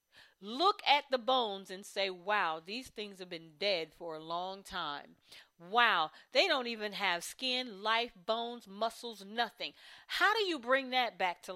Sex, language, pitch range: female, English, 200-265 Hz